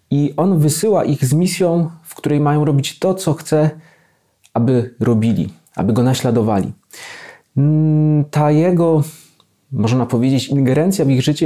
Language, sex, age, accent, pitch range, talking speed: Polish, male, 30-49, native, 120-155 Hz, 135 wpm